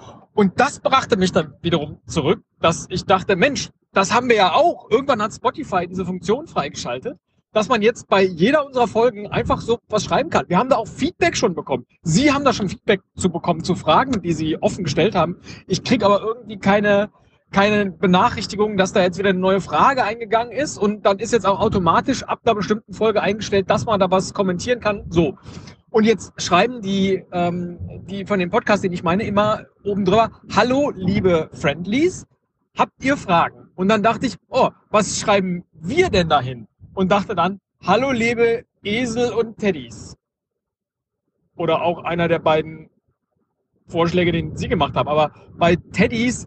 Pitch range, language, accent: 175-220 Hz, German, German